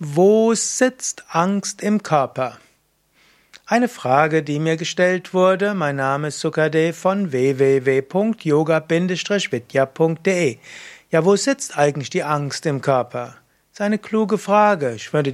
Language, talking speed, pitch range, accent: German, 125 wpm, 145-180 Hz, German